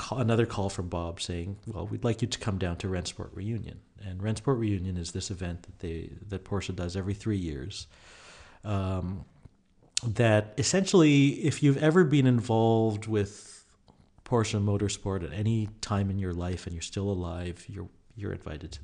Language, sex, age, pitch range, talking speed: English, male, 50-69, 90-115 Hz, 180 wpm